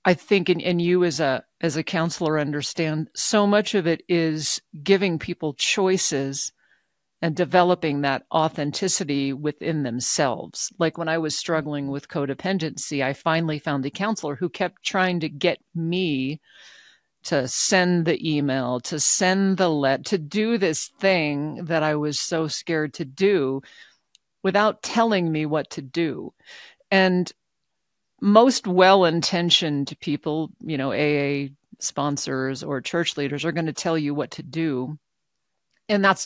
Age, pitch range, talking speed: 50-69, 150-185 Hz, 145 wpm